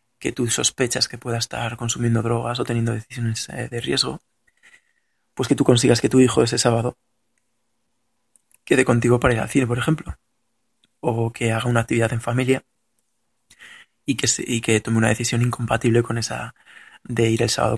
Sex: male